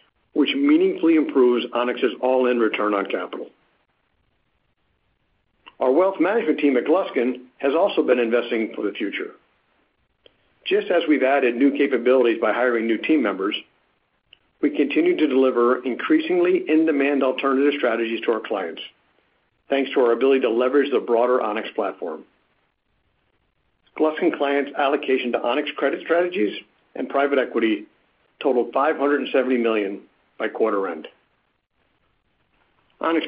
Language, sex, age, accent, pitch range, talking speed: English, male, 50-69, American, 125-160 Hz, 125 wpm